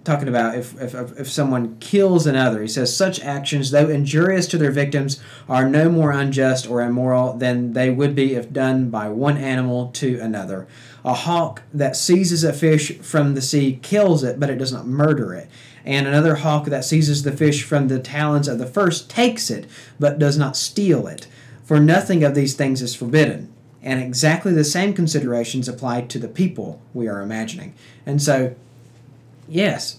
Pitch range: 125-155 Hz